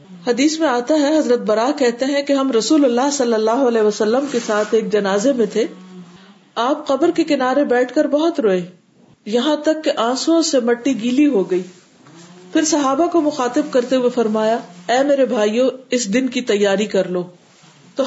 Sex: female